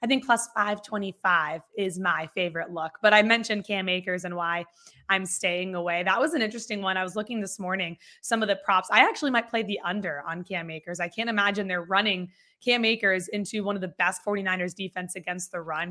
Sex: female